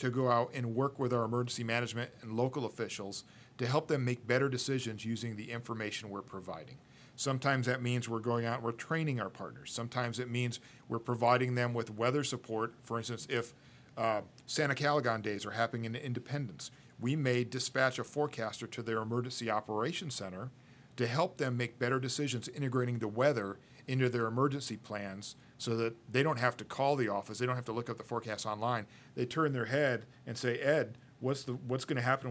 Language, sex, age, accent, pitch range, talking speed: English, male, 40-59, American, 110-130 Hz, 200 wpm